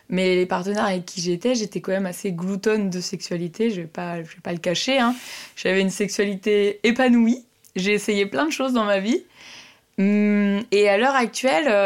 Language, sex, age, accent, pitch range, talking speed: French, female, 20-39, French, 185-235 Hz, 185 wpm